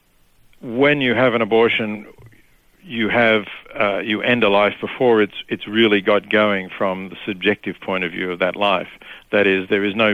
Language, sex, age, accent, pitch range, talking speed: English, male, 60-79, Australian, 95-110 Hz, 190 wpm